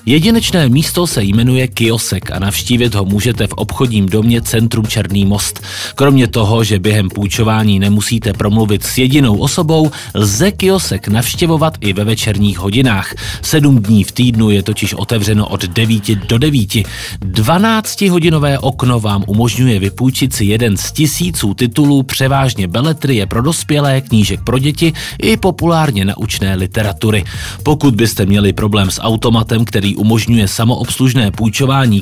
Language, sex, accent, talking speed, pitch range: Czech, male, native, 140 wpm, 100-130 Hz